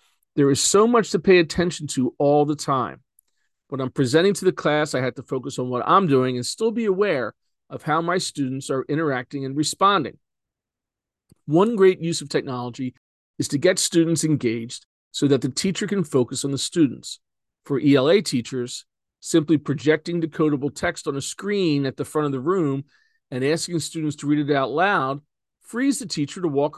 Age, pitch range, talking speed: 40-59, 130-170 Hz, 190 wpm